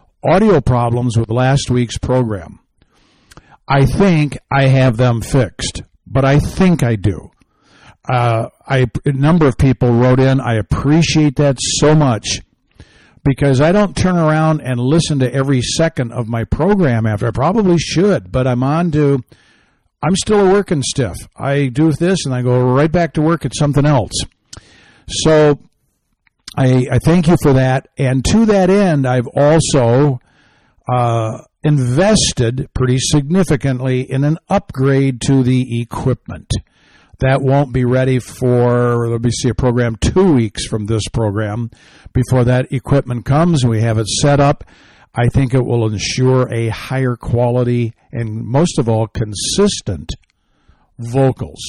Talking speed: 150 wpm